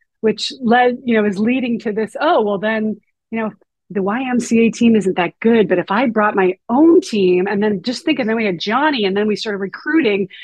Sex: female